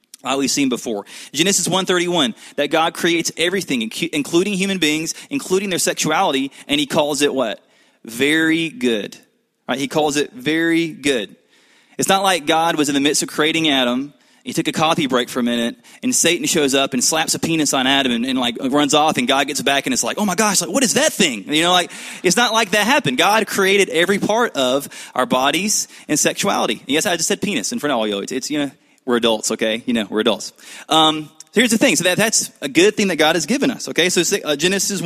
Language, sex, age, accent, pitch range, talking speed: English, male, 20-39, American, 150-220 Hz, 230 wpm